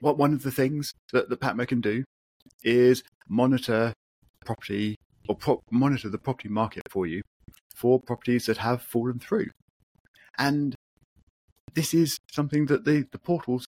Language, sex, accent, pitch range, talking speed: English, male, British, 100-125 Hz, 150 wpm